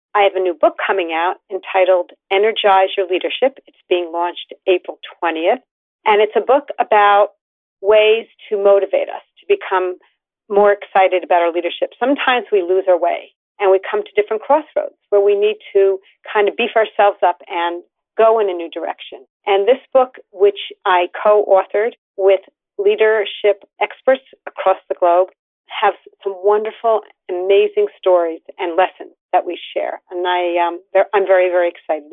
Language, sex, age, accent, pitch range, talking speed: English, female, 40-59, American, 185-230 Hz, 160 wpm